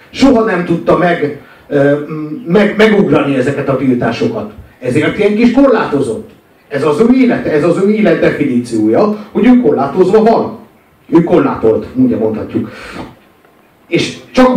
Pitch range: 125-190 Hz